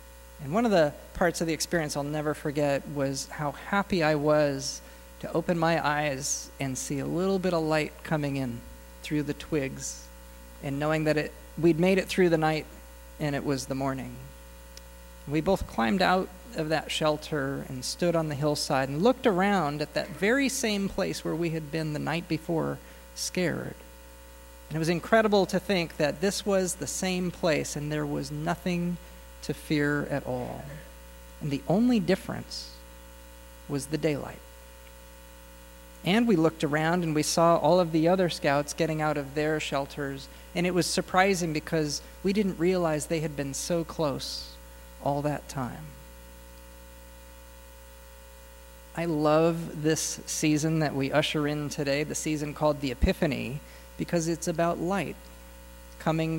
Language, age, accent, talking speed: English, 40-59, American, 165 wpm